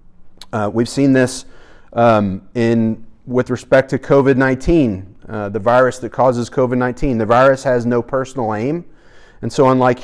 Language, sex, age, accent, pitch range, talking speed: English, male, 30-49, American, 120-140 Hz, 150 wpm